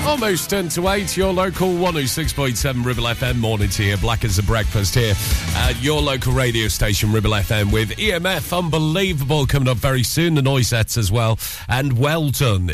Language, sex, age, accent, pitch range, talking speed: English, male, 40-59, British, 105-160 Hz, 185 wpm